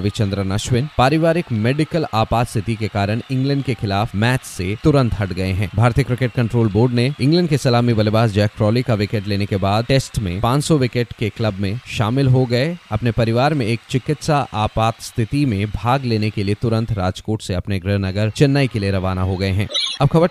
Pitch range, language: 105-135 Hz, Hindi